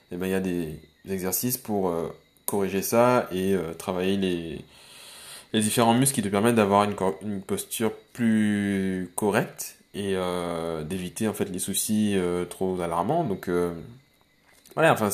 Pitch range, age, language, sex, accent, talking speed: 95-110 Hz, 20-39, French, male, French, 135 wpm